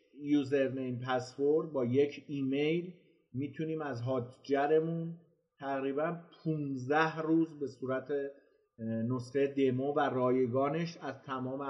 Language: Persian